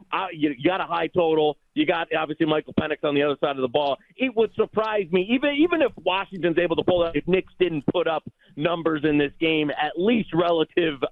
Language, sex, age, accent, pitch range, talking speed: English, male, 30-49, American, 135-180 Hz, 230 wpm